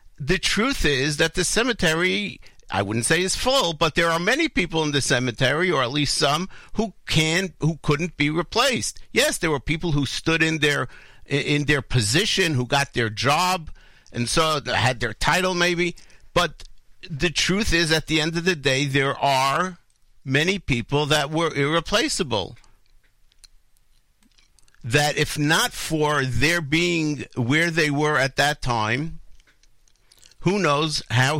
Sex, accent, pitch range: male, American, 130-165 Hz